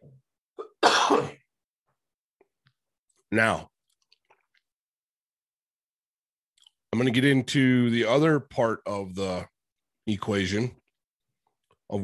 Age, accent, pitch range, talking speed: 40-59, American, 110-165 Hz, 65 wpm